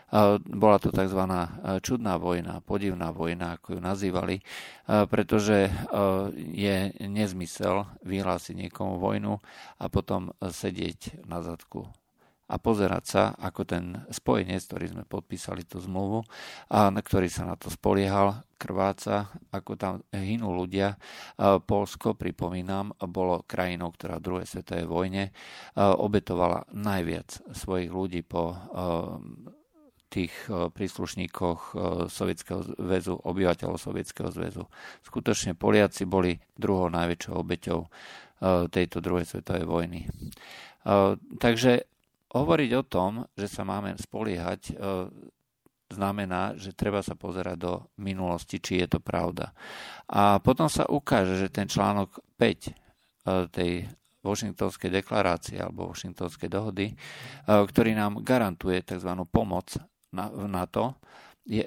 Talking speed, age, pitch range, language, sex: 110 wpm, 50-69, 90-100 Hz, Slovak, male